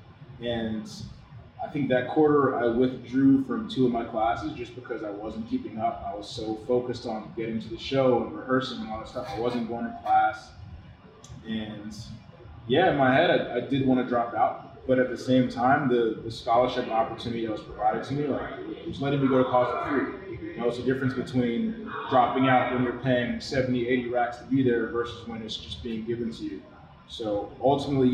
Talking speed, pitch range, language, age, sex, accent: 215 wpm, 115-130 Hz, English, 20-39, male, American